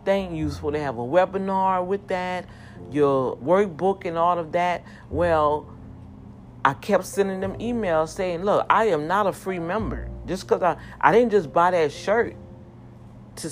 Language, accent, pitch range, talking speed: English, American, 135-190 Hz, 170 wpm